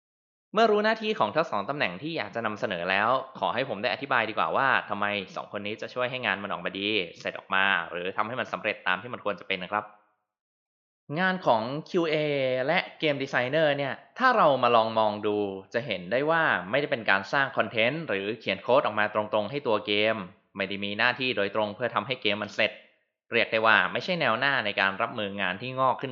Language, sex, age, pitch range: Thai, male, 20-39, 105-140 Hz